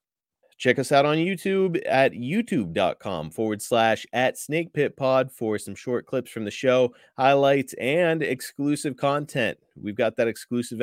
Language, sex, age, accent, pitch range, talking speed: English, male, 30-49, American, 105-135 Hz, 145 wpm